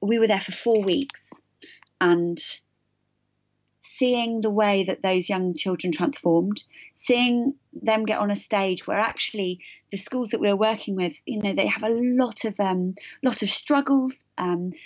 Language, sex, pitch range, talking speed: English, female, 180-225 Hz, 170 wpm